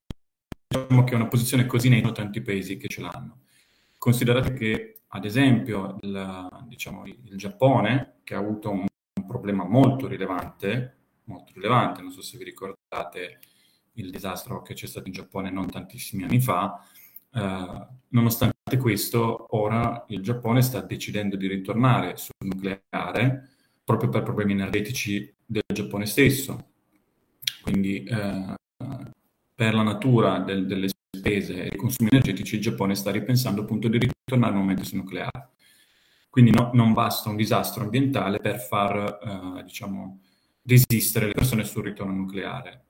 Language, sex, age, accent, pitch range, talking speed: Italian, male, 30-49, native, 100-120 Hz, 145 wpm